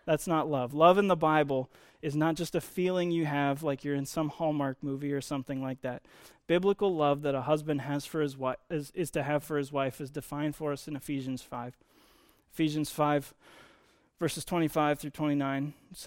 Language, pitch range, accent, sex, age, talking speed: English, 135-155 Hz, American, male, 20-39, 200 wpm